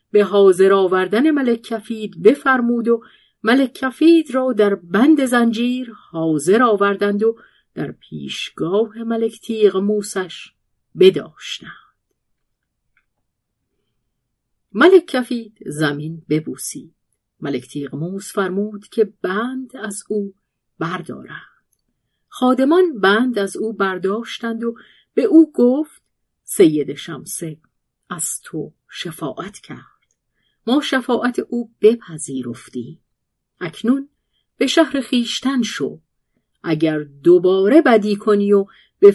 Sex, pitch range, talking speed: female, 185-245 Hz, 95 wpm